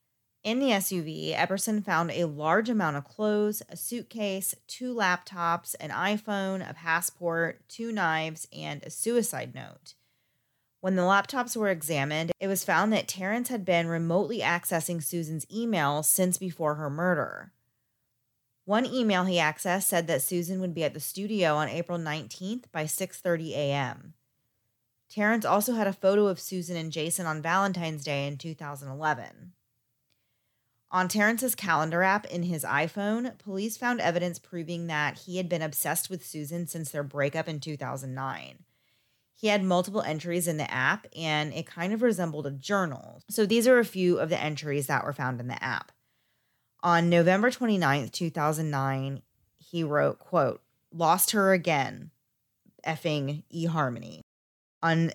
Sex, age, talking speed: female, 30-49, 150 wpm